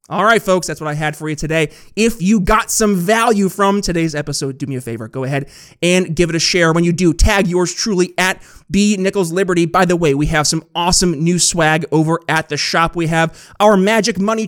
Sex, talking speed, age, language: male, 235 wpm, 30-49, English